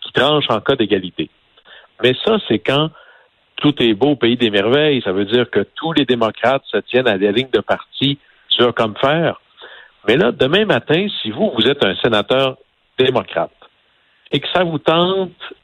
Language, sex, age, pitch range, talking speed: French, male, 60-79, 115-155 Hz, 185 wpm